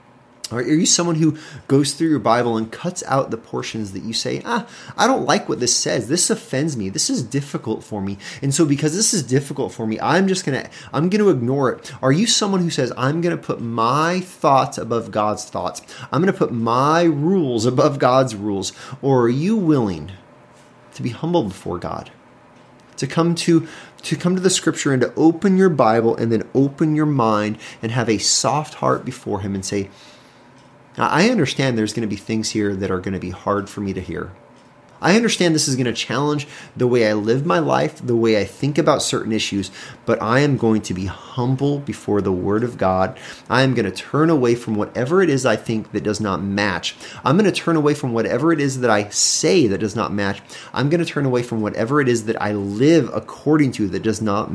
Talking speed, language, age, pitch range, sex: 220 wpm, English, 30-49, 105-150 Hz, male